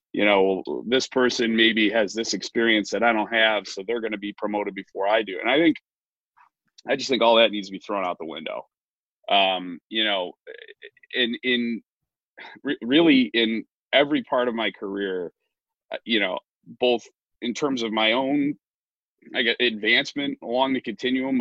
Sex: male